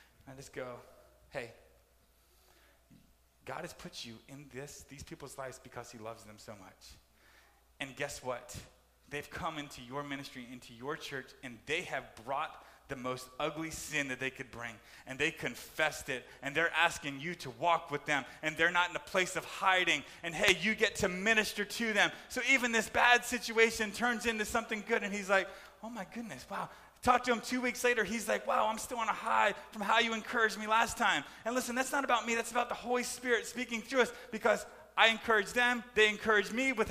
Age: 30-49